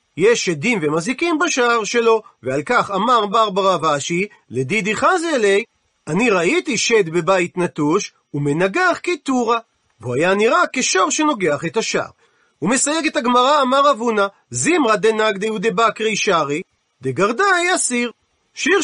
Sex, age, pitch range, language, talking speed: male, 40-59, 195-285 Hz, Hebrew, 120 wpm